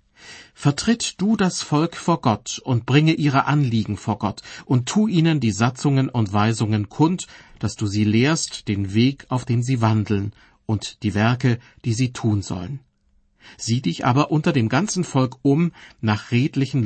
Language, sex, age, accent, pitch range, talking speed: German, male, 50-69, German, 110-145 Hz, 165 wpm